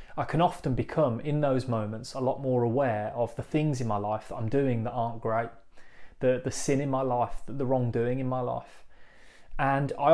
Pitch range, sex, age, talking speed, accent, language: 120-140 Hz, male, 30-49, 220 wpm, British, English